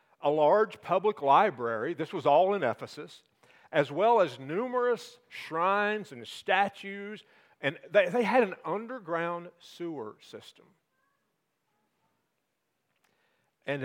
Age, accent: 50-69, American